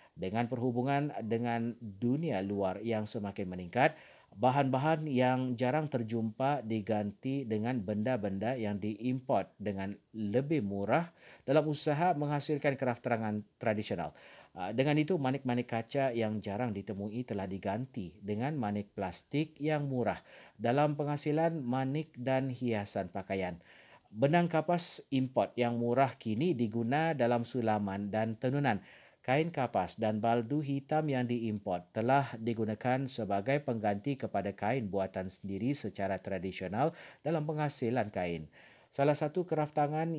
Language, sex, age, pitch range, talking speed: Malay, male, 40-59, 105-140 Hz, 120 wpm